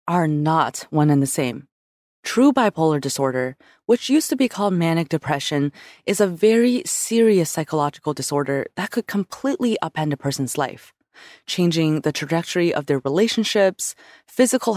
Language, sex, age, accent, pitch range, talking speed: English, female, 20-39, American, 150-225 Hz, 145 wpm